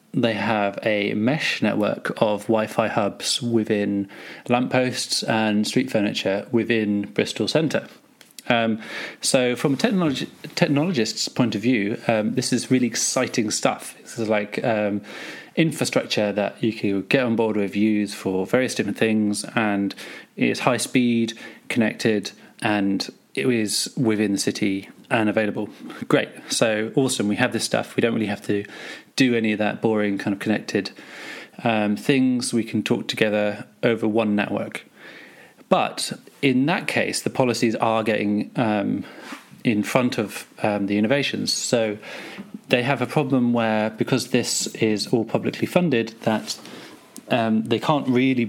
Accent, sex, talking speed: British, male, 150 wpm